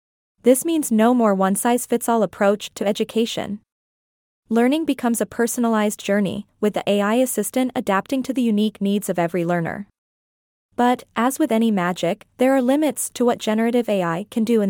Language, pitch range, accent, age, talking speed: English, 200-245 Hz, American, 20-39, 165 wpm